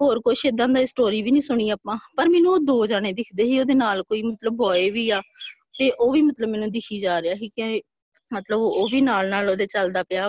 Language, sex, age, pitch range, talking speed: Punjabi, female, 20-39, 215-285 Hz, 240 wpm